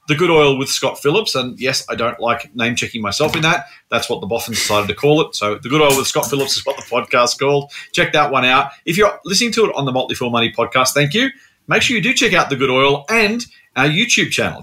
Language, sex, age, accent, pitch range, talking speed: English, male, 40-59, Australian, 130-175 Hz, 265 wpm